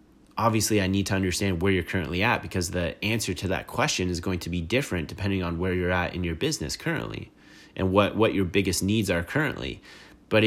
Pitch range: 85-100 Hz